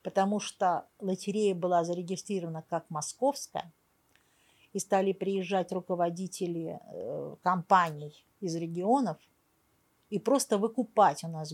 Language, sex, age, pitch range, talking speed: Russian, female, 50-69, 180-250 Hz, 100 wpm